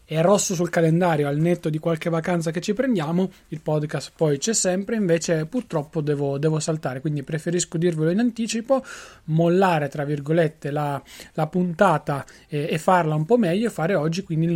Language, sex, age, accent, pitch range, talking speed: Italian, male, 20-39, native, 160-185 Hz, 175 wpm